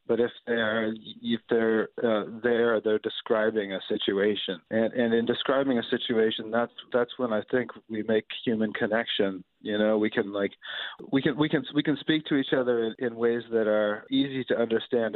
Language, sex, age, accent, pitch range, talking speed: English, male, 40-59, American, 100-115 Hz, 195 wpm